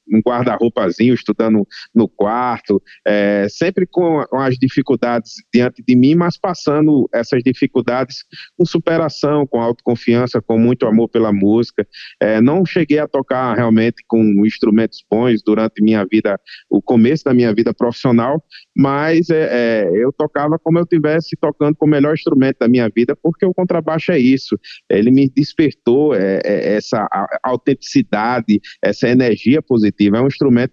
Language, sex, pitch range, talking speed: Portuguese, male, 115-150 Hz, 135 wpm